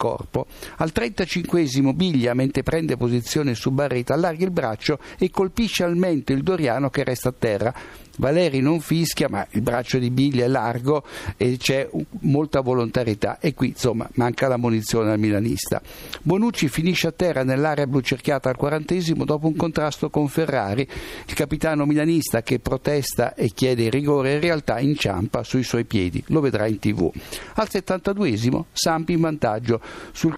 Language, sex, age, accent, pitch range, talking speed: Italian, male, 60-79, native, 125-165 Hz, 165 wpm